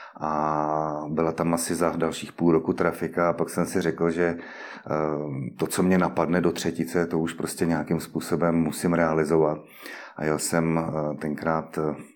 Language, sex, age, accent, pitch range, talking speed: Czech, male, 30-49, native, 75-80 Hz, 160 wpm